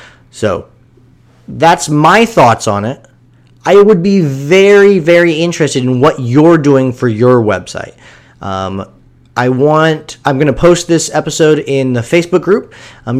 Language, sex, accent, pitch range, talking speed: English, male, American, 125-160 Hz, 160 wpm